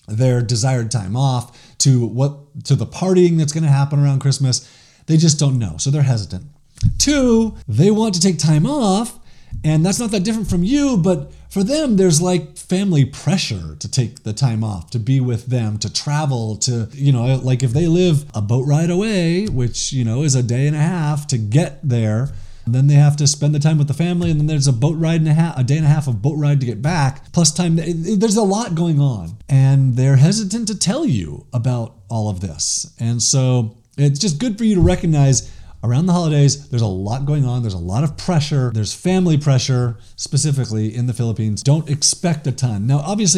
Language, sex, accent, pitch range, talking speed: English, male, American, 125-160 Hz, 220 wpm